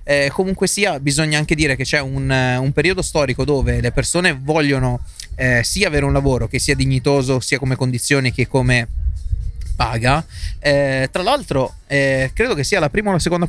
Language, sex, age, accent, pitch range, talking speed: Italian, male, 20-39, native, 130-150 Hz, 185 wpm